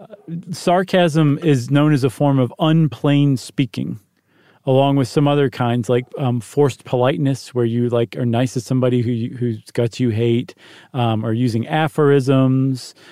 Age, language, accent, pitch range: 40-59, English, American, 125-155 Hz